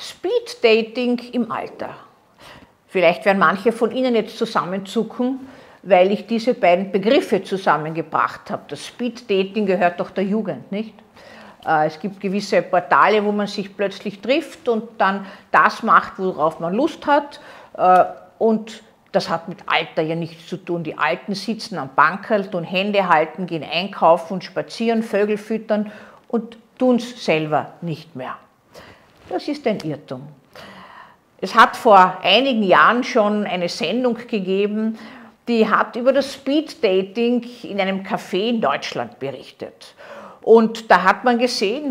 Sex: female